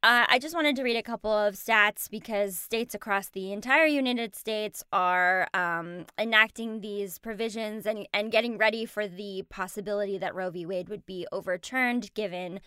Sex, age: female, 10-29